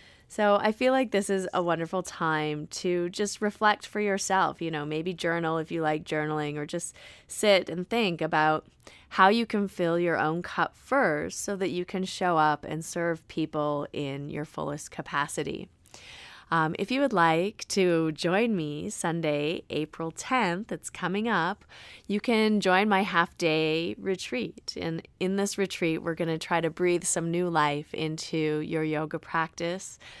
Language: English